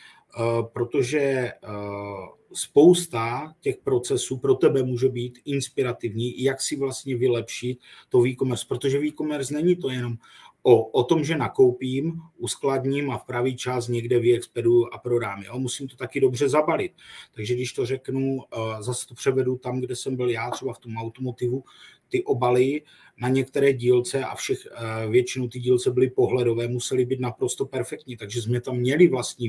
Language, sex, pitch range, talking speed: Czech, male, 120-135 Hz, 160 wpm